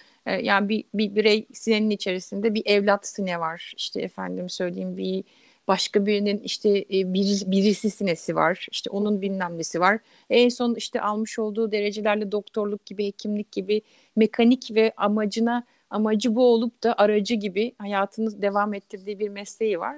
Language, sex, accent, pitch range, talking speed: Turkish, female, native, 195-235 Hz, 150 wpm